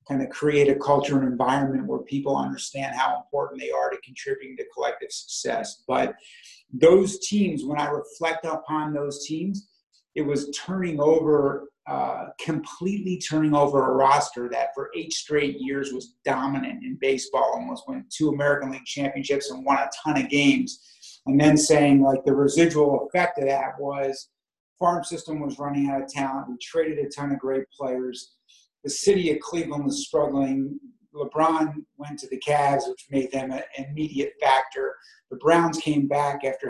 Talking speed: 175 wpm